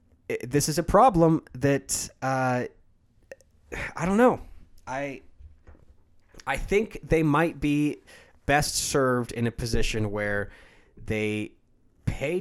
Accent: American